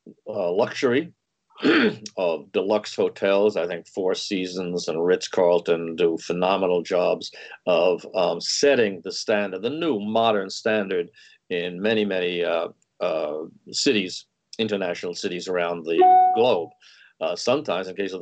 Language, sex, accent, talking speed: English, male, American, 130 wpm